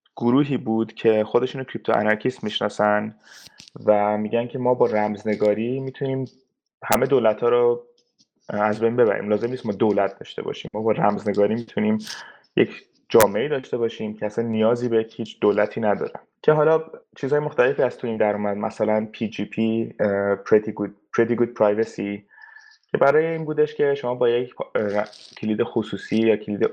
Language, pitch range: Persian, 105-135 Hz